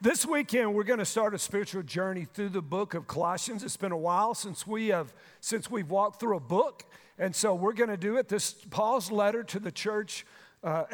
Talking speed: 225 wpm